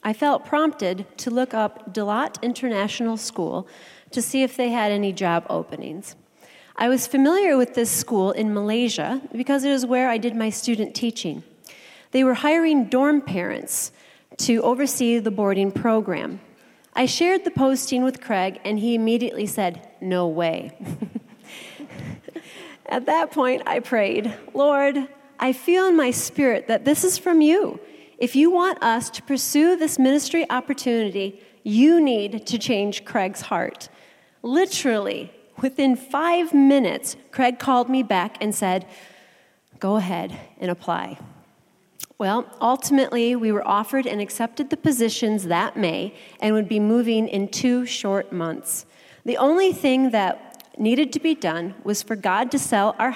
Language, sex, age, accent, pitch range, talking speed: English, female, 40-59, American, 210-275 Hz, 150 wpm